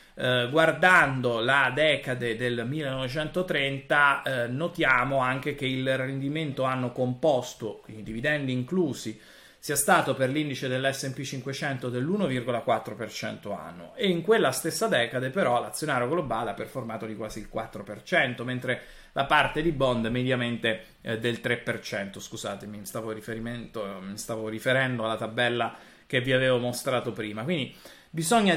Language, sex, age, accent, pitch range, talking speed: Italian, male, 30-49, native, 115-145 Hz, 120 wpm